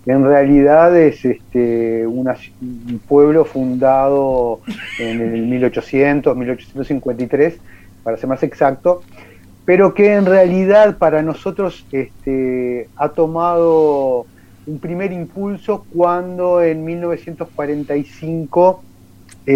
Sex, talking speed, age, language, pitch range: male, 95 wpm, 30-49, Spanish, 120-170 Hz